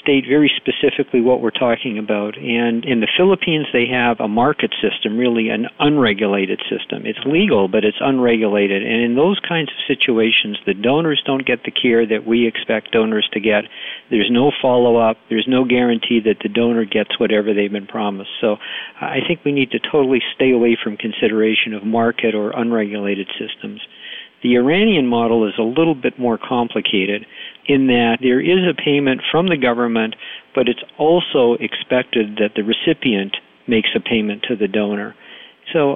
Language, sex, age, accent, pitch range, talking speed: English, male, 50-69, American, 110-135 Hz, 175 wpm